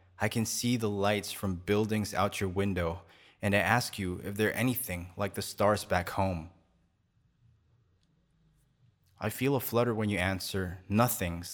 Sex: male